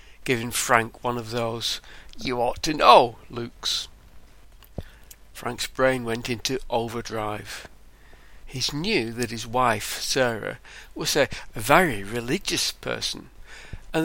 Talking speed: 115 wpm